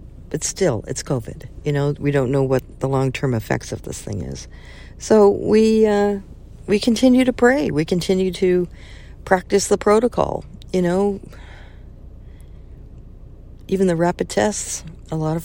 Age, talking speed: 50-69, 150 wpm